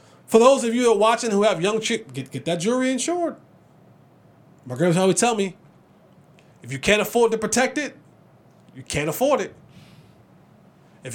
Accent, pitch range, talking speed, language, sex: American, 180-240 Hz, 180 wpm, English, male